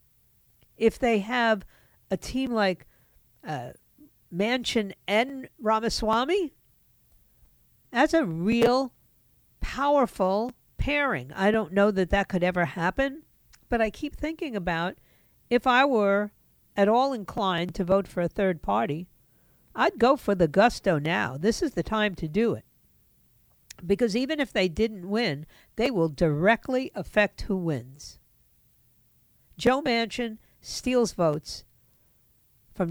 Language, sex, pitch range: English, female, 170-245 Hz